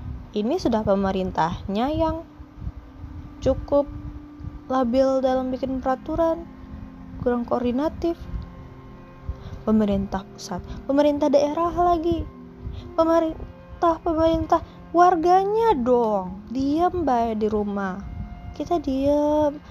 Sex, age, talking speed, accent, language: female, 20-39, 80 wpm, native, Indonesian